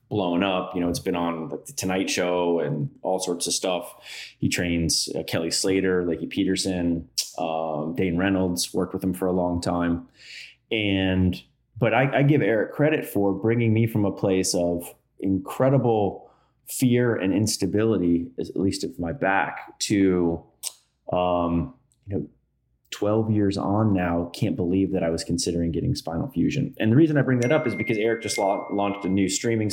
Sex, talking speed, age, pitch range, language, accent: male, 180 wpm, 20-39, 90-110 Hz, English, American